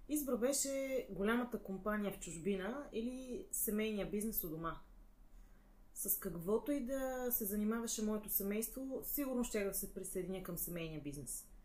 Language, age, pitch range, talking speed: Bulgarian, 30-49, 180-220 Hz, 140 wpm